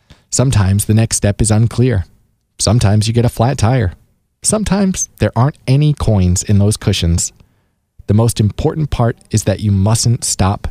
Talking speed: 165 wpm